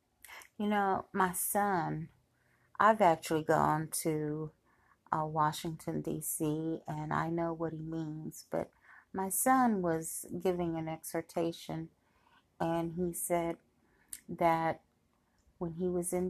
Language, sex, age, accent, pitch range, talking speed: English, female, 40-59, American, 160-185 Hz, 120 wpm